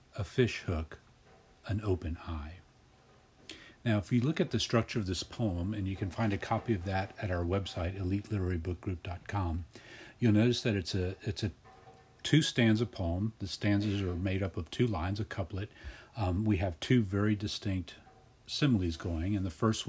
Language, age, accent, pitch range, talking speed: English, 40-59, American, 85-105 Hz, 180 wpm